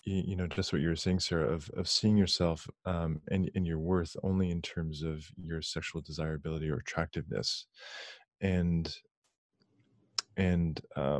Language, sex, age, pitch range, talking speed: English, male, 20-39, 80-95 Hz, 150 wpm